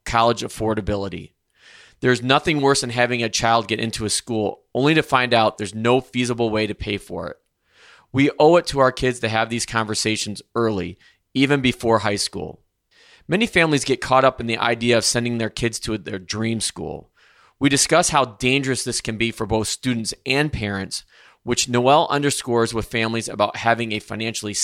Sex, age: male, 20-39